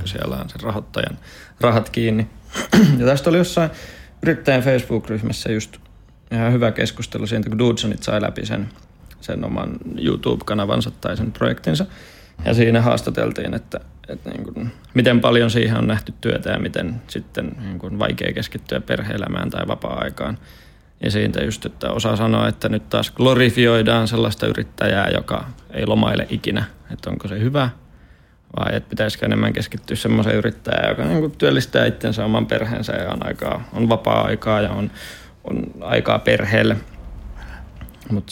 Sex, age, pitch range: male, 30-49, 105-125 Hz